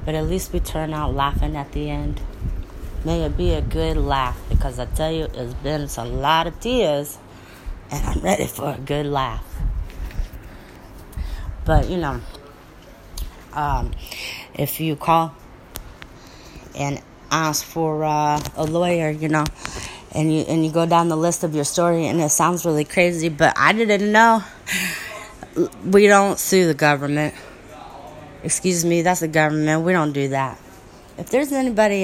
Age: 30-49